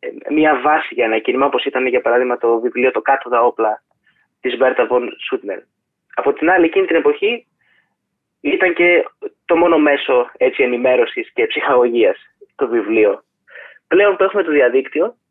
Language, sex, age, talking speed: Greek, male, 20-39, 160 wpm